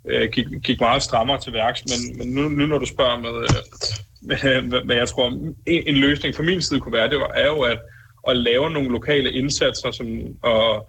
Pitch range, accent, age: 115-130 Hz, native, 20-39